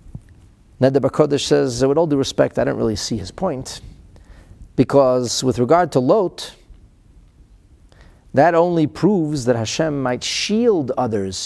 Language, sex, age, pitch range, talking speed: English, male, 40-59, 100-150 Hz, 135 wpm